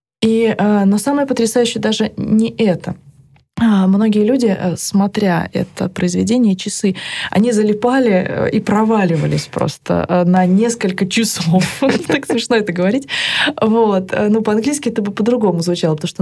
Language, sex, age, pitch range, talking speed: Russian, female, 20-39, 190-240 Hz, 120 wpm